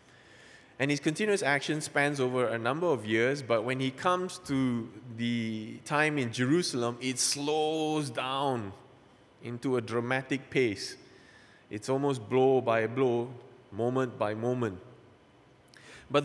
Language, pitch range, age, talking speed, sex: English, 125-155 Hz, 20-39, 130 wpm, male